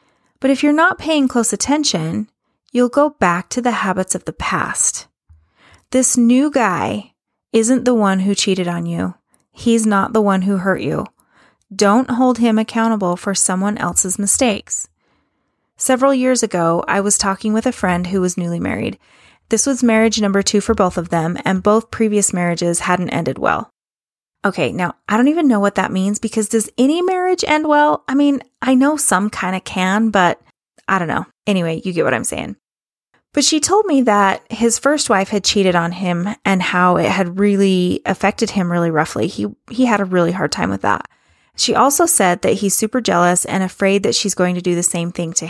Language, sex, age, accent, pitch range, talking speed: English, female, 30-49, American, 185-245 Hz, 200 wpm